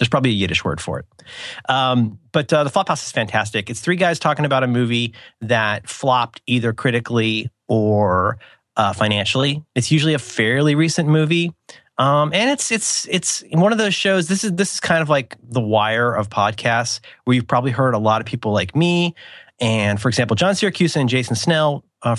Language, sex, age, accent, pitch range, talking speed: English, male, 30-49, American, 110-155 Hz, 200 wpm